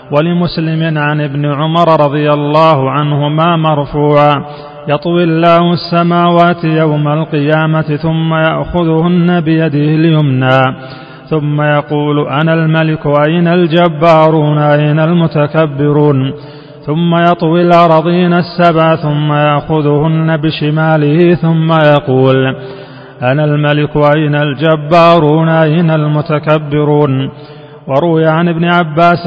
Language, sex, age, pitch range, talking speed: Arabic, male, 30-49, 150-160 Hz, 90 wpm